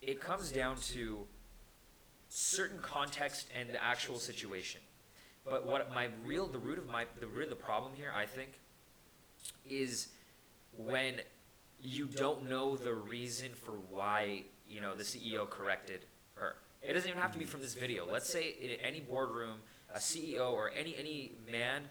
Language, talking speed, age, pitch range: English, 165 wpm, 20-39, 110-140 Hz